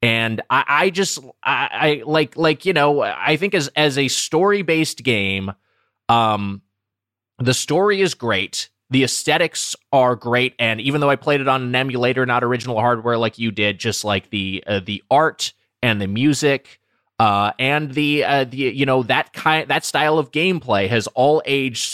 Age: 20-39